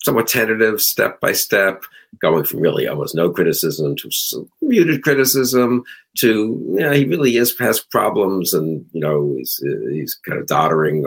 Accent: American